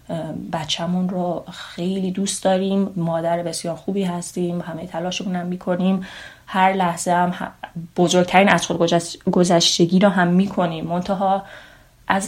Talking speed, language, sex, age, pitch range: 120 wpm, Persian, female, 30-49, 165-195 Hz